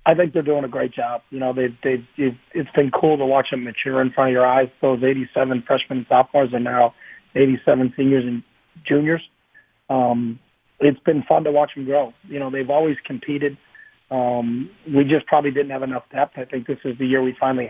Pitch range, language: 125-140 Hz, English